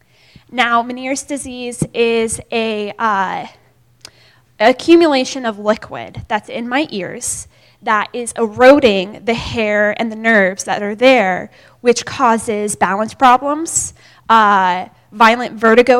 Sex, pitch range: female, 195-250 Hz